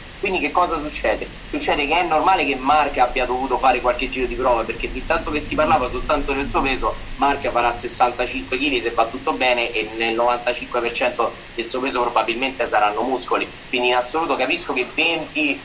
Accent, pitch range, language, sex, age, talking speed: native, 125-170 Hz, Italian, male, 30-49, 190 wpm